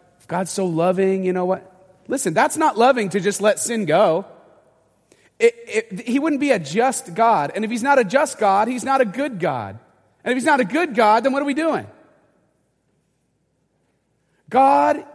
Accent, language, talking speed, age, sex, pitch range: American, English, 180 wpm, 30-49, male, 145-220 Hz